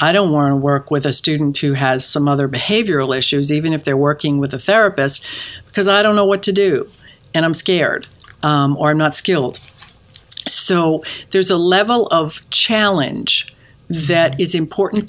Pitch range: 145-180 Hz